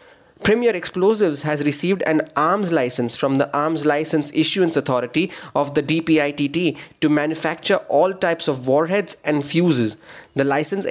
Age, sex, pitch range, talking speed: 30-49, male, 145-175 Hz, 145 wpm